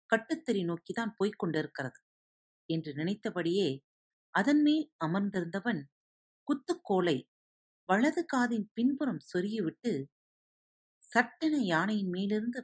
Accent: native